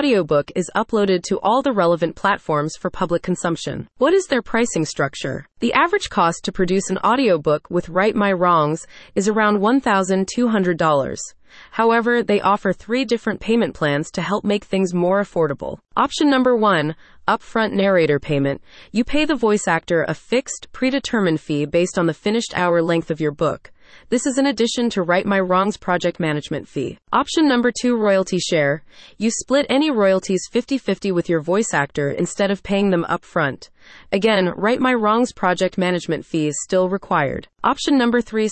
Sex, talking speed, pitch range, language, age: female, 175 wpm, 170-230 Hz, English, 30-49